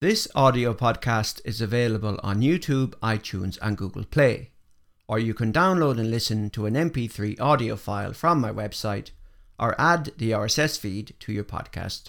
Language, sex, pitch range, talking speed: English, male, 110-145 Hz, 165 wpm